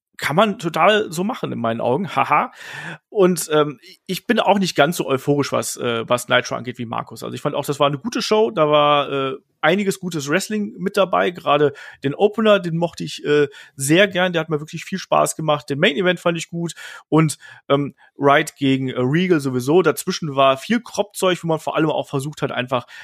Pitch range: 130-165 Hz